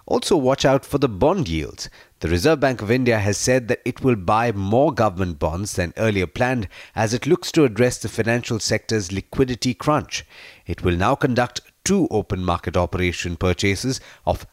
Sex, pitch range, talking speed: male, 95-130 Hz, 180 wpm